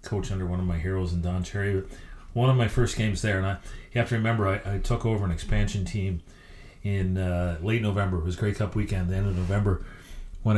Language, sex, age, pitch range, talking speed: English, male, 40-59, 95-115 Hz, 245 wpm